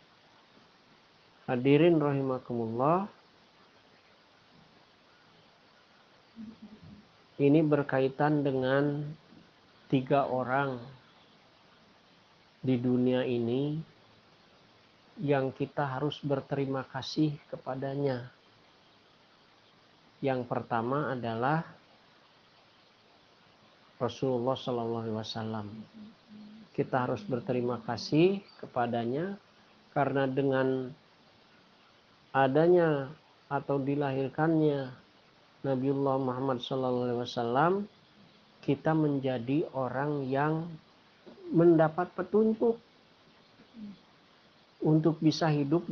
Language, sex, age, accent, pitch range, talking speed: Indonesian, male, 50-69, native, 130-165 Hz, 60 wpm